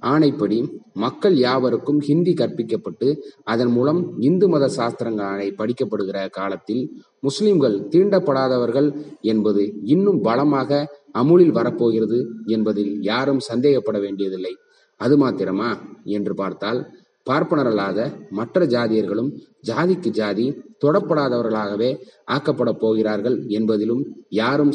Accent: native